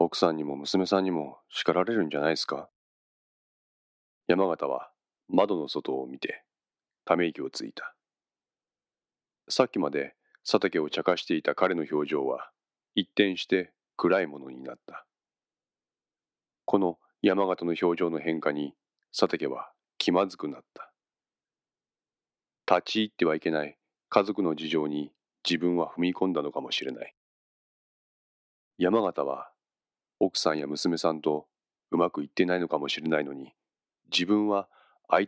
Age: 40-59